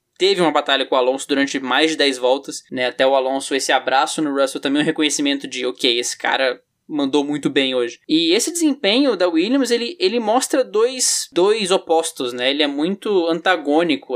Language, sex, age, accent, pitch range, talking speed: Portuguese, male, 10-29, Brazilian, 145-200 Hz, 195 wpm